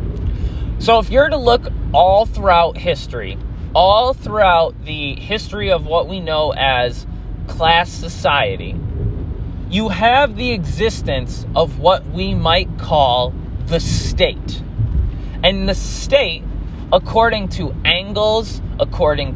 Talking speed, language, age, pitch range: 115 wpm, English, 20-39, 115-190 Hz